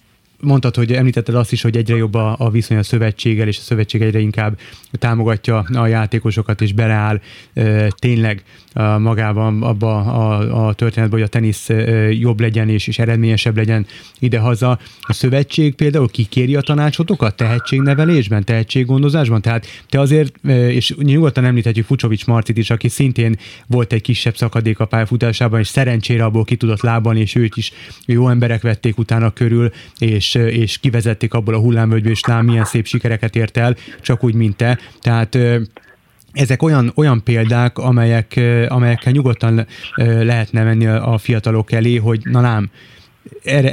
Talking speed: 160 wpm